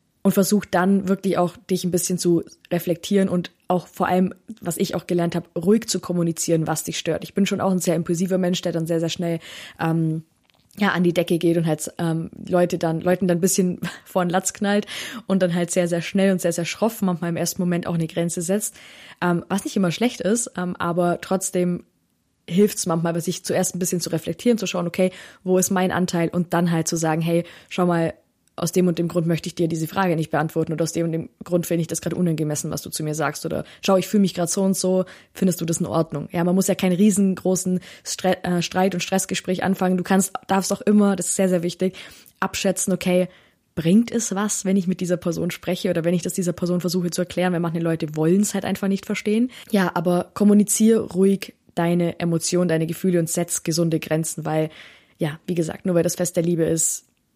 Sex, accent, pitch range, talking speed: female, German, 170-190 Hz, 235 wpm